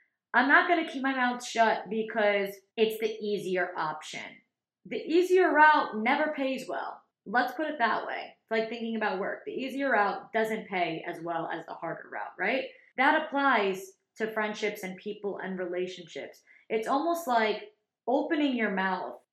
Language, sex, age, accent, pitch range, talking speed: English, female, 20-39, American, 185-240 Hz, 170 wpm